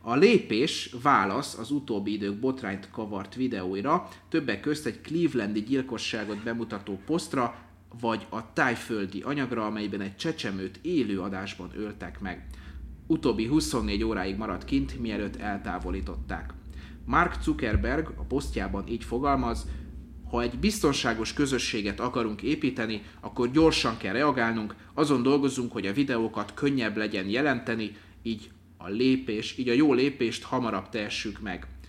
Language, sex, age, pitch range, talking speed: Hungarian, male, 30-49, 95-120 Hz, 130 wpm